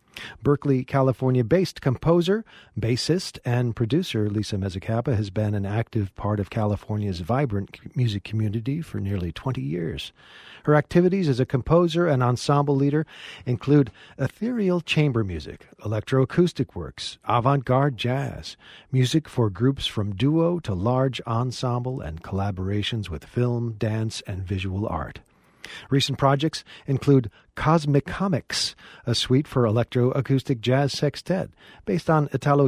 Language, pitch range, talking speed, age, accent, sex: English, 110-145 Hz, 125 wpm, 40-59, American, male